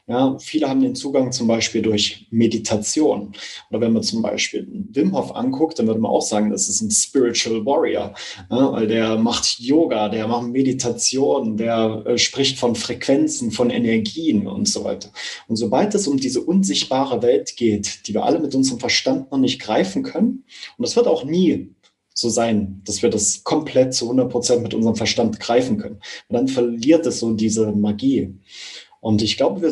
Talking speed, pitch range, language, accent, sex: 185 wpm, 115-165 Hz, German, German, male